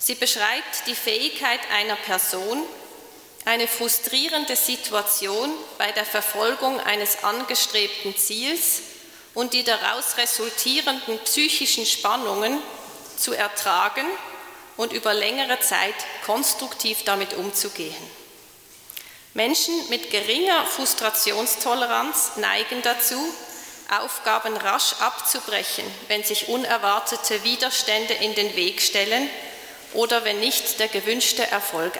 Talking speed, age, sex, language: 100 wpm, 30-49, female, German